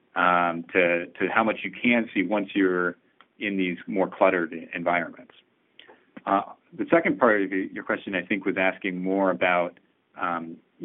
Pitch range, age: 90-100 Hz, 30-49